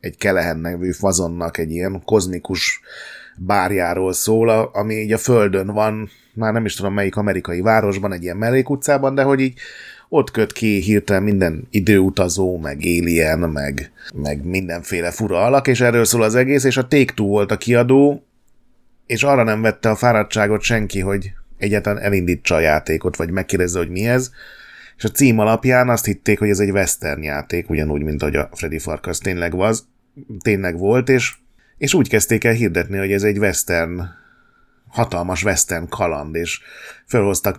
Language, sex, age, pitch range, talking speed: Hungarian, male, 30-49, 85-115 Hz, 165 wpm